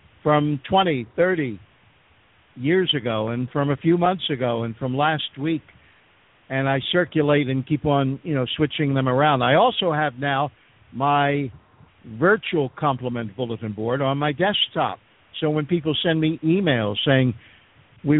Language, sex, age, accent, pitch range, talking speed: English, male, 60-79, American, 125-160 Hz, 150 wpm